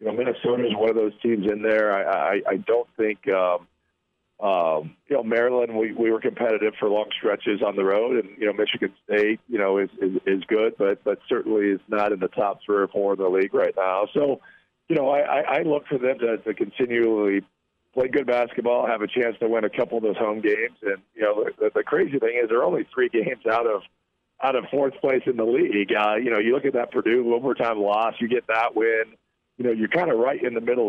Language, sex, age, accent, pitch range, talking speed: English, male, 40-59, American, 105-130 Hz, 245 wpm